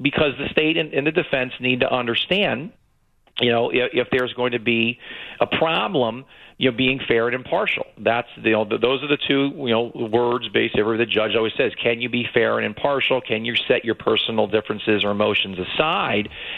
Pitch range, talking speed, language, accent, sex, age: 105-125 Hz, 215 wpm, English, American, male, 40-59